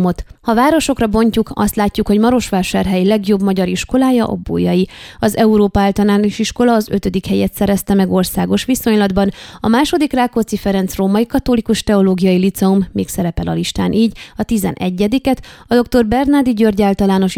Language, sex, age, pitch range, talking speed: Hungarian, female, 20-39, 185-225 Hz, 145 wpm